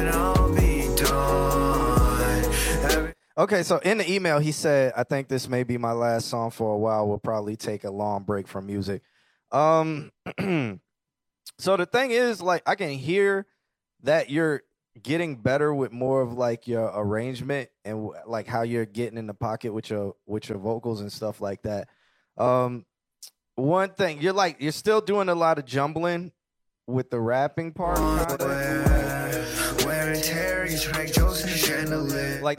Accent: American